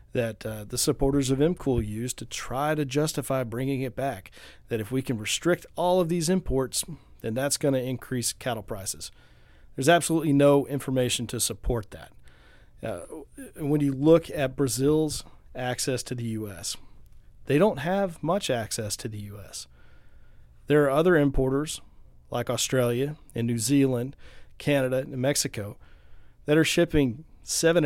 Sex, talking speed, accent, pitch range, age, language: male, 155 wpm, American, 120-145 Hz, 40-59, English